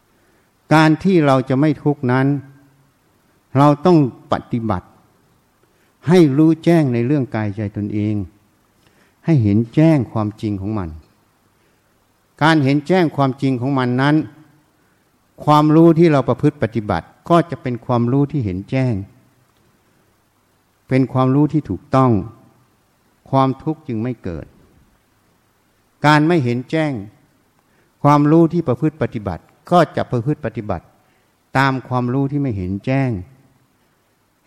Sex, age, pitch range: male, 60-79, 105-145 Hz